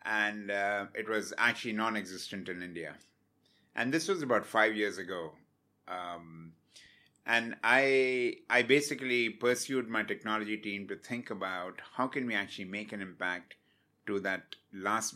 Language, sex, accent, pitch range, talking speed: English, male, Indian, 100-120 Hz, 145 wpm